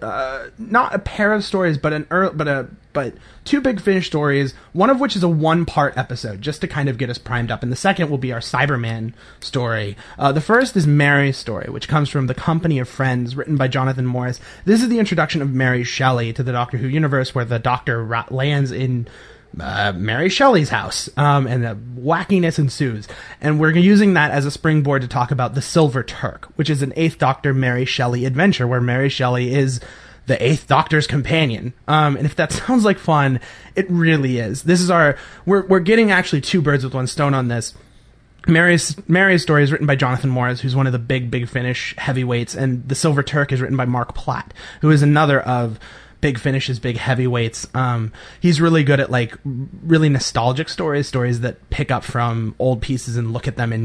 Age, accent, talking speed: 30-49, American, 210 wpm